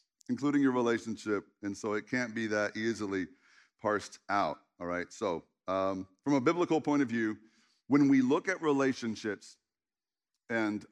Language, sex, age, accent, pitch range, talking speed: English, male, 50-69, American, 125-205 Hz, 155 wpm